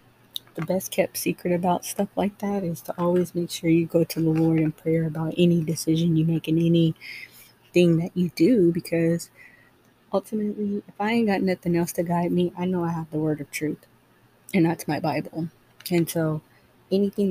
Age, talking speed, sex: 20-39, 195 wpm, female